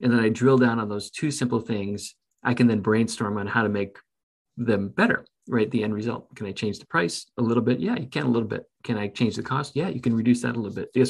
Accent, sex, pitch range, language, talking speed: American, male, 110-125 Hz, English, 280 wpm